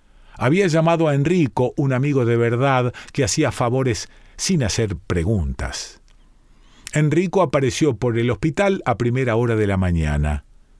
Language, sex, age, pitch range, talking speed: Spanish, male, 40-59, 100-140 Hz, 140 wpm